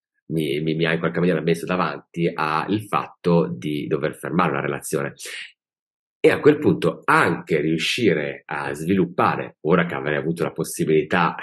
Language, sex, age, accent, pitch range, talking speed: Italian, male, 30-49, native, 75-90 Hz, 155 wpm